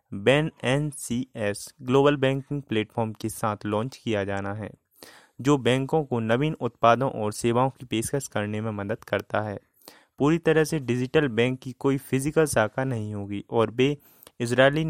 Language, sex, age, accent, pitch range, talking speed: Hindi, male, 30-49, native, 110-140 Hz, 165 wpm